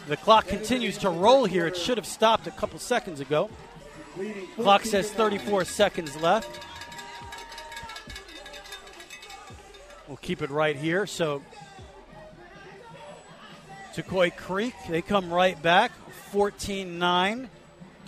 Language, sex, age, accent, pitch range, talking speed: English, male, 40-59, American, 165-205 Hz, 105 wpm